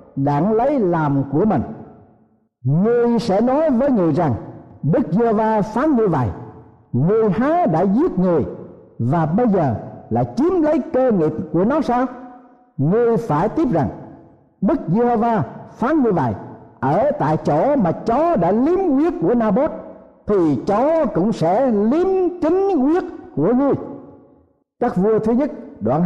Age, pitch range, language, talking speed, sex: 60-79, 160-245 Hz, Vietnamese, 150 wpm, male